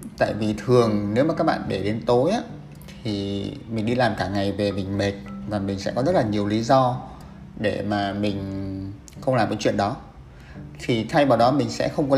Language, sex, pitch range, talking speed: Vietnamese, male, 100-135 Hz, 220 wpm